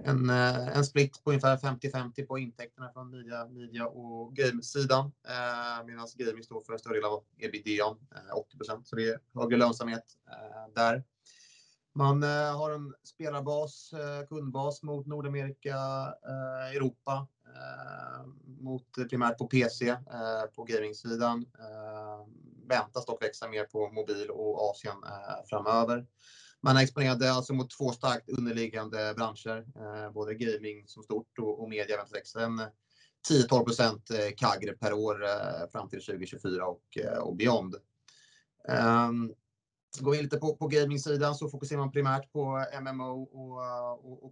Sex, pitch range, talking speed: male, 115-135 Hz, 145 wpm